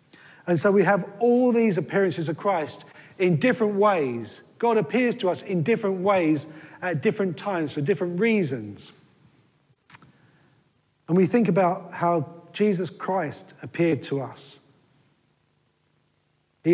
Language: English